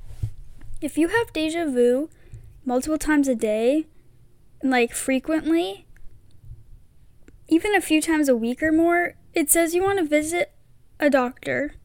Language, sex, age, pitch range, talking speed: English, female, 10-29, 235-315 Hz, 135 wpm